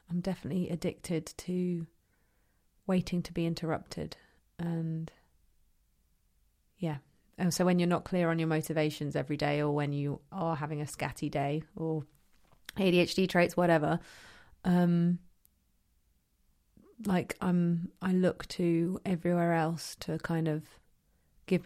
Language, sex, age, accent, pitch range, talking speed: English, female, 30-49, British, 155-180 Hz, 120 wpm